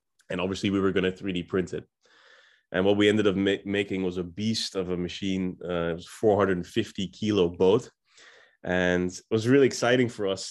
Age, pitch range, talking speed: 20-39, 90-105 Hz, 200 wpm